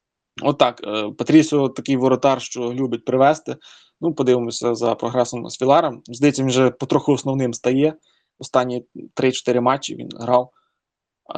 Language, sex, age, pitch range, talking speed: Ukrainian, male, 20-39, 125-150 Hz, 130 wpm